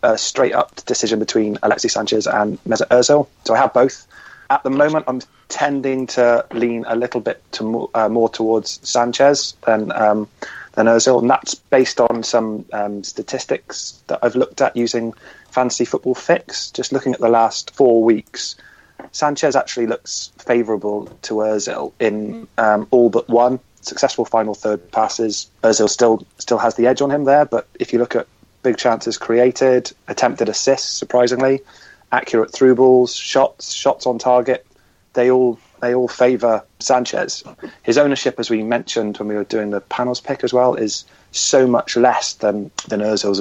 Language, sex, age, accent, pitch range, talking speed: English, male, 30-49, British, 110-125 Hz, 170 wpm